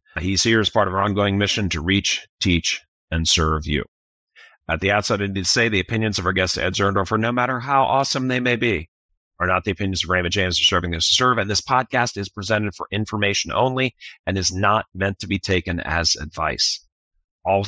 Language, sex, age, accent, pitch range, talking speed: English, male, 40-59, American, 90-125 Hz, 225 wpm